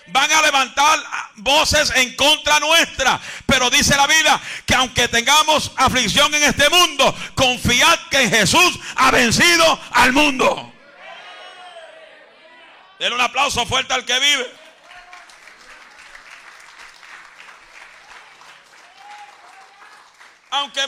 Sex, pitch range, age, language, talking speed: male, 245-310 Hz, 50-69, Spanish, 95 wpm